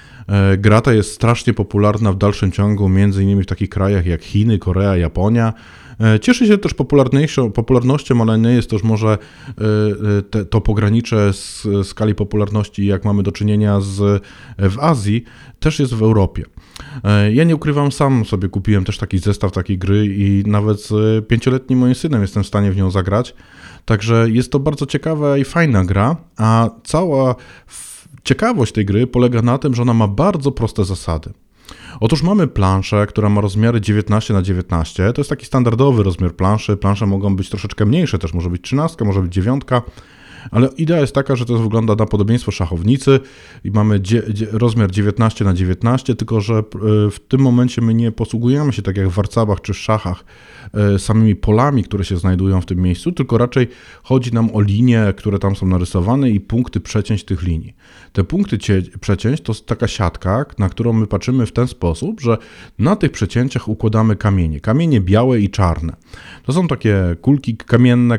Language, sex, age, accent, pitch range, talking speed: Polish, male, 20-39, native, 100-120 Hz, 175 wpm